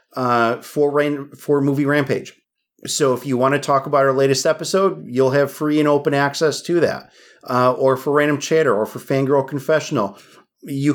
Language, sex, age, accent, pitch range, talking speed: English, male, 40-59, American, 130-155 Hz, 185 wpm